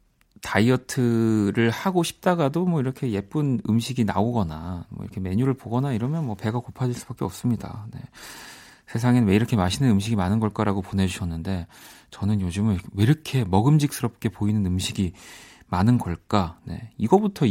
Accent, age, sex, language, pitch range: native, 40-59, male, Korean, 100-135 Hz